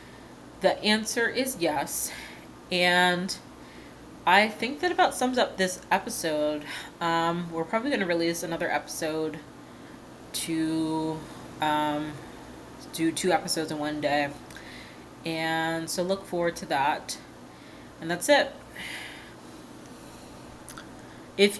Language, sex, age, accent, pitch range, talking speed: English, female, 20-39, American, 165-195 Hz, 110 wpm